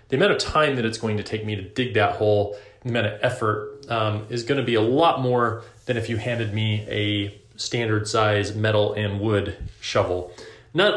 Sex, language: male, English